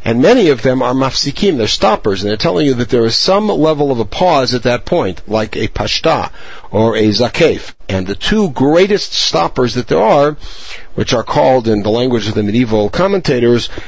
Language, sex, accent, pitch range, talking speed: English, male, American, 115-150 Hz, 205 wpm